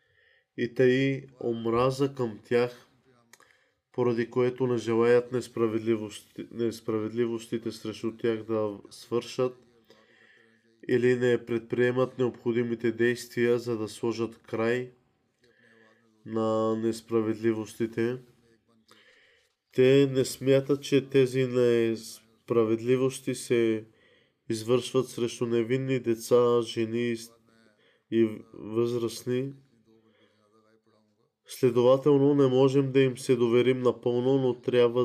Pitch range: 115-125 Hz